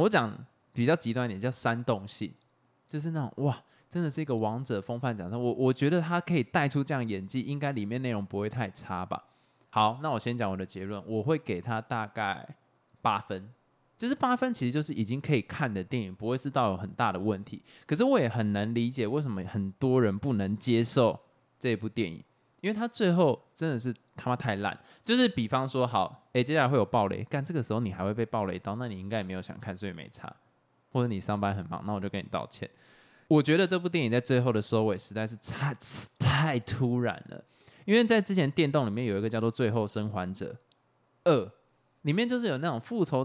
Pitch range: 110-145 Hz